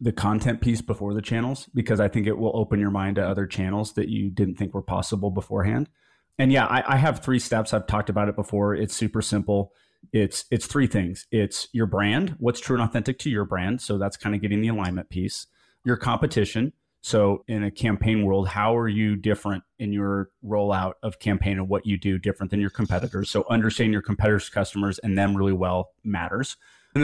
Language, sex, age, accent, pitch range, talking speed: English, male, 30-49, American, 100-125 Hz, 215 wpm